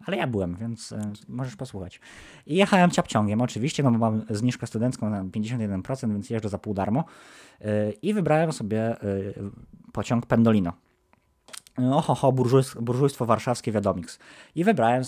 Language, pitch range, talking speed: Polish, 100-130 Hz, 150 wpm